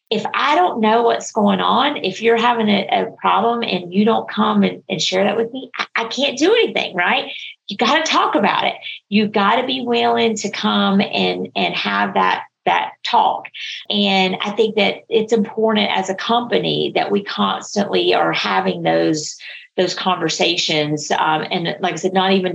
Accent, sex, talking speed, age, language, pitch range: American, female, 190 wpm, 40-59, English, 185-230 Hz